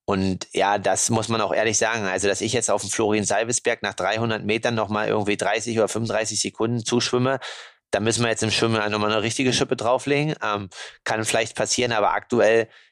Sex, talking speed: male, 205 wpm